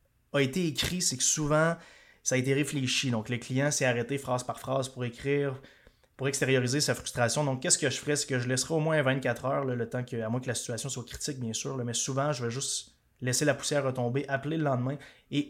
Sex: male